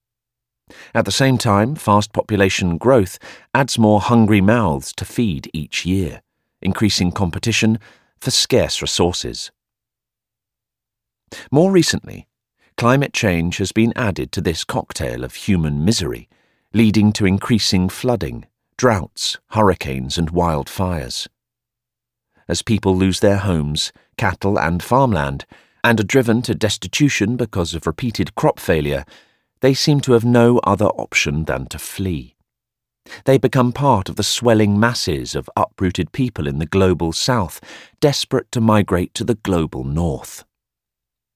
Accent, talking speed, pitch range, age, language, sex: British, 130 wpm, 85-120 Hz, 40-59, English, male